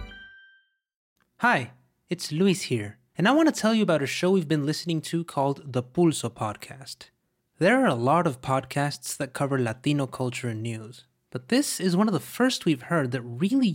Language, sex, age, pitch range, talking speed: English, male, 20-39, 125-180 Hz, 190 wpm